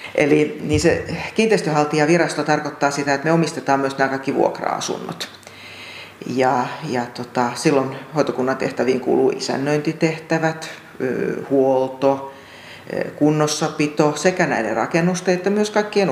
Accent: native